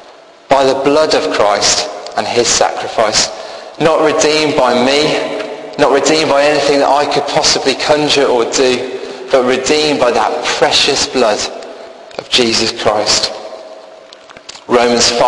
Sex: male